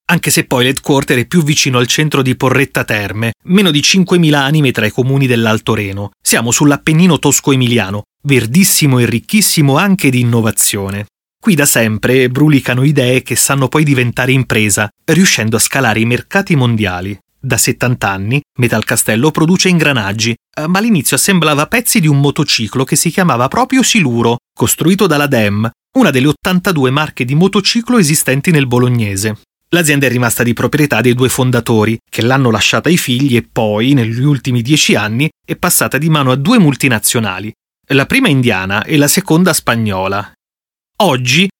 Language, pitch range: Italian, 115-155 Hz